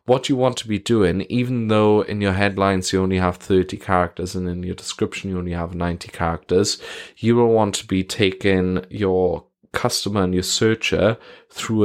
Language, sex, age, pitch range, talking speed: English, male, 20-39, 95-110 Hz, 185 wpm